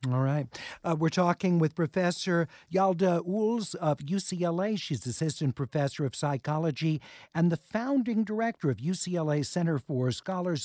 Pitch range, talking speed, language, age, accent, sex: 140-180 Hz, 140 wpm, English, 50-69, American, male